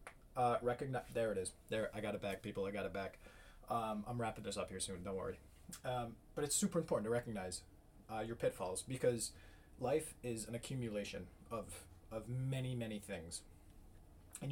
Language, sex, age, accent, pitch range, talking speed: English, male, 20-39, American, 100-120 Hz, 185 wpm